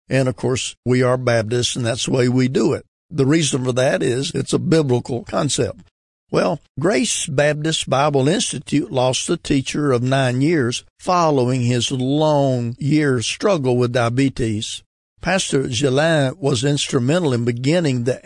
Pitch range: 125-150 Hz